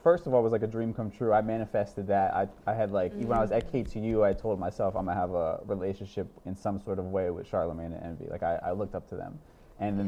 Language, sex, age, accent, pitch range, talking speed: English, male, 20-39, American, 95-115 Hz, 285 wpm